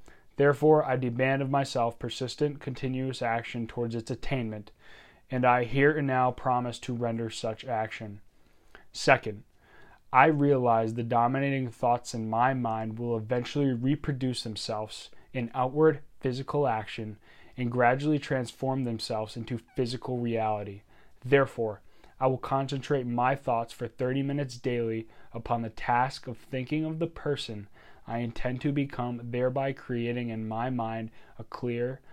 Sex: male